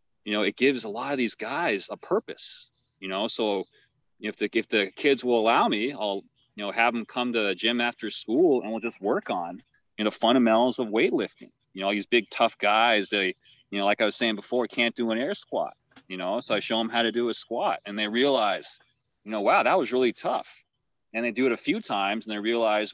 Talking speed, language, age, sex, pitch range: 240 wpm, English, 30-49, male, 105-125 Hz